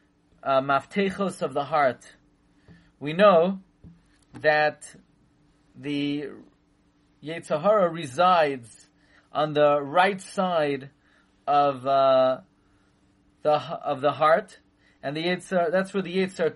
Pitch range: 145-185 Hz